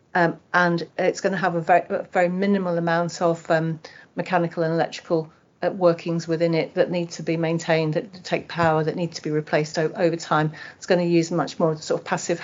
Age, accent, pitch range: 40-59, British, 160-180 Hz